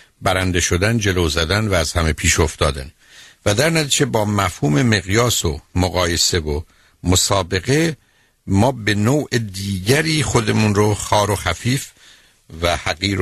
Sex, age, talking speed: male, 60-79, 135 wpm